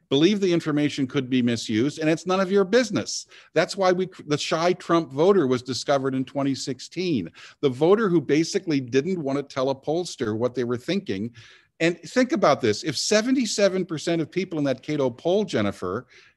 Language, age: English, 50-69